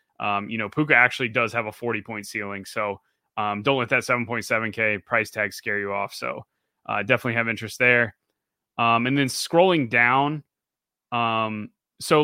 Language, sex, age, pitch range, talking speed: English, male, 20-39, 120-140 Hz, 175 wpm